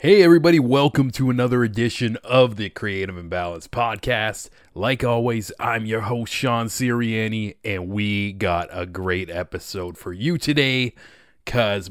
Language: English